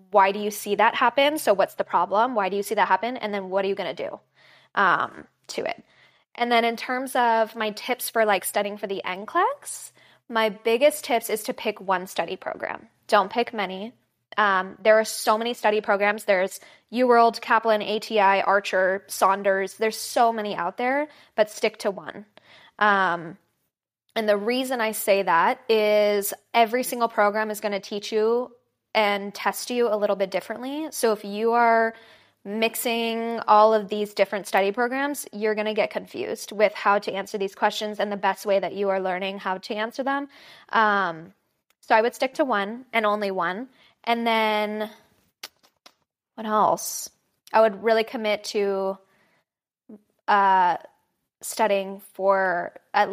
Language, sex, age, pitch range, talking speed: English, female, 10-29, 200-230 Hz, 170 wpm